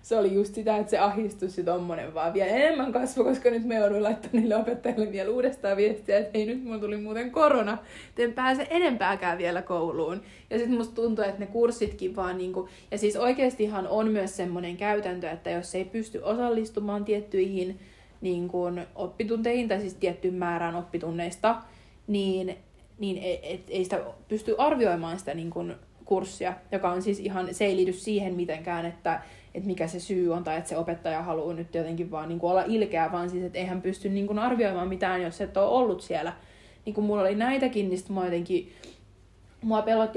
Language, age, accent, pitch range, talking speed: Finnish, 30-49, native, 175-220 Hz, 185 wpm